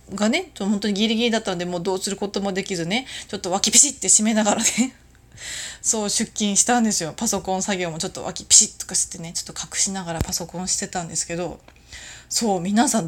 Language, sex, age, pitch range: Japanese, female, 20-39, 180-235 Hz